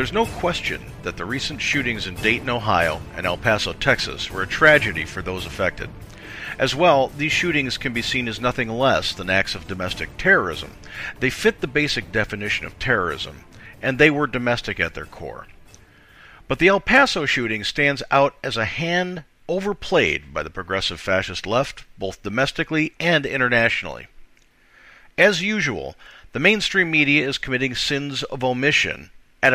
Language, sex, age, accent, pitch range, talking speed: English, male, 50-69, American, 110-150 Hz, 160 wpm